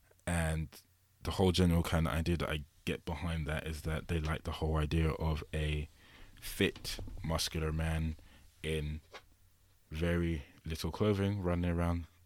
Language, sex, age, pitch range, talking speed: English, male, 20-39, 80-95 Hz, 145 wpm